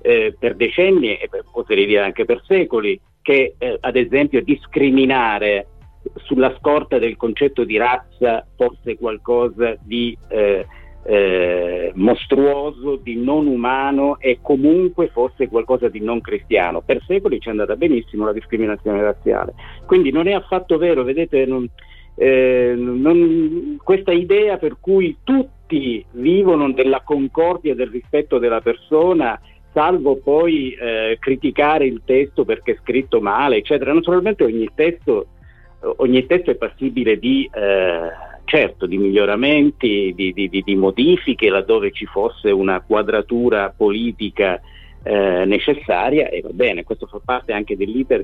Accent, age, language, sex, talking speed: native, 50-69, Italian, male, 140 wpm